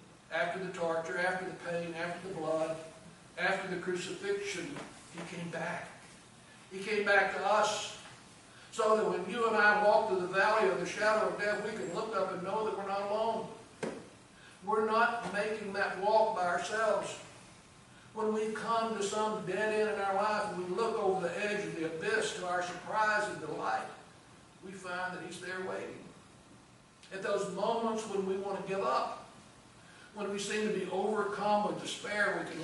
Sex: male